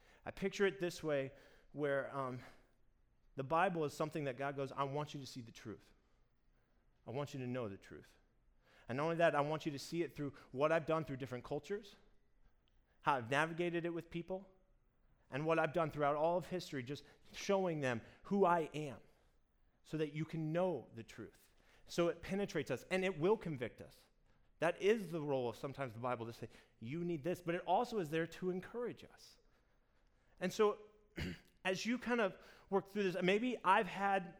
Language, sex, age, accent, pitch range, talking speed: English, male, 30-49, American, 140-185 Hz, 200 wpm